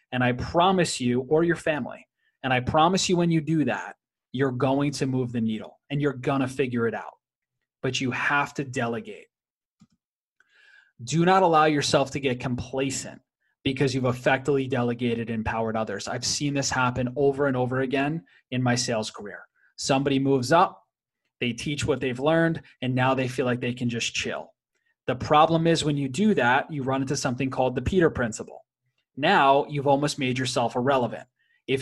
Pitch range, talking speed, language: 125-155 Hz, 185 wpm, English